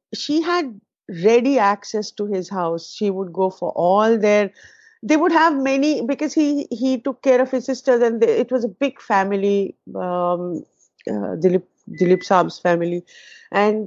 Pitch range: 175-245 Hz